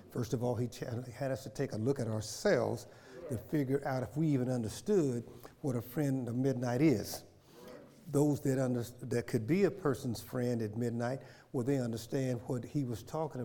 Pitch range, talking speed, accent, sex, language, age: 120-140 Hz, 185 wpm, American, male, English, 50-69